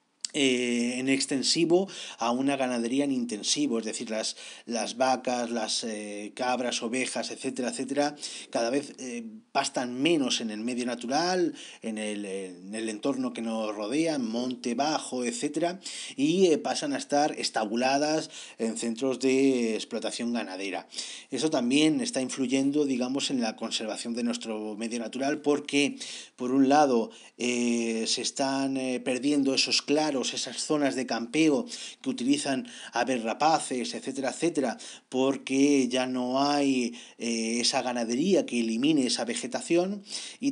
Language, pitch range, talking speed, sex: Spanish, 120-150 Hz, 140 wpm, male